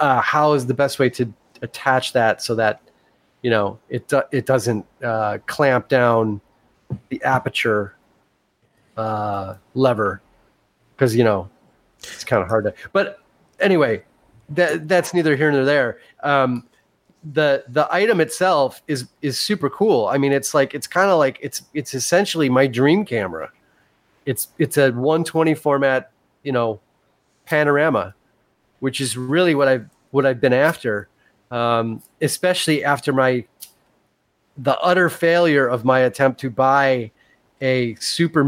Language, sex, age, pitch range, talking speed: English, male, 30-49, 115-145 Hz, 150 wpm